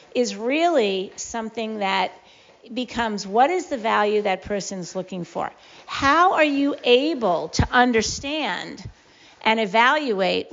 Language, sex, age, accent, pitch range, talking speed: English, female, 50-69, American, 200-260 Hz, 120 wpm